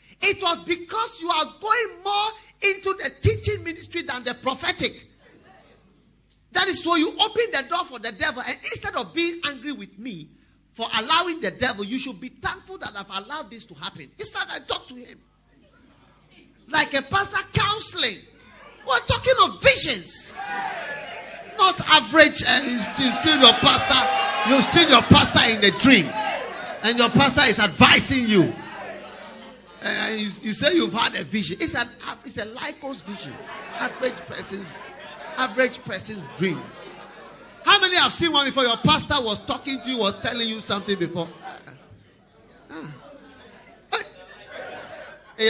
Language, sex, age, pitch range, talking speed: English, male, 40-59, 210-335 Hz, 150 wpm